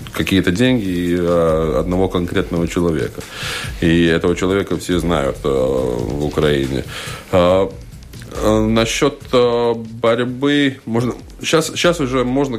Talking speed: 85 wpm